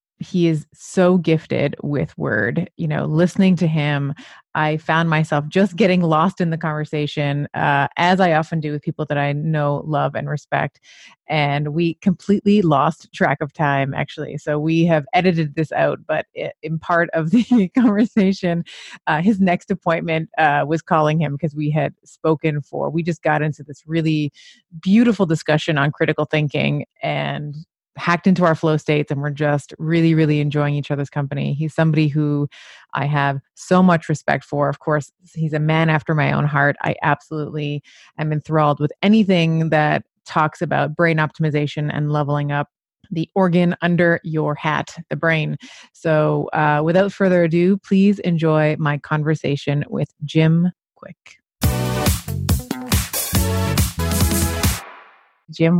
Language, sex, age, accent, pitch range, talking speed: English, female, 30-49, American, 150-170 Hz, 155 wpm